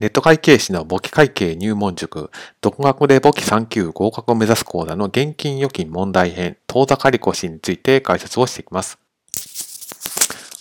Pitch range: 100-140 Hz